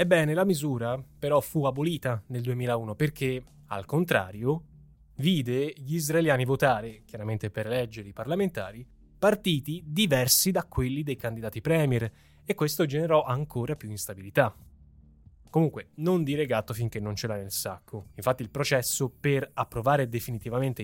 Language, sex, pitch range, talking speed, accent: Italian, male, 115-150 Hz, 140 wpm, native